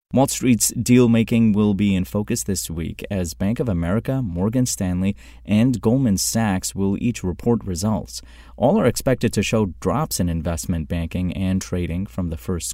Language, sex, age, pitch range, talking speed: English, male, 30-49, 85-115 Hz, 170 wpm